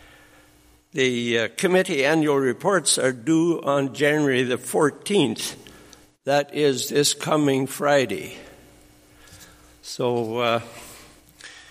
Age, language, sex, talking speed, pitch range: 60-79, English, male, 90 wpm, 125-145 Hz